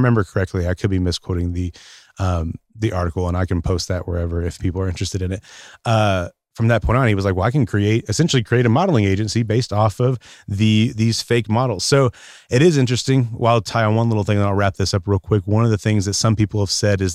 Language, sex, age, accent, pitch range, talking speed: English, male, 30-49, American, 95-115 Hz, 260 wpm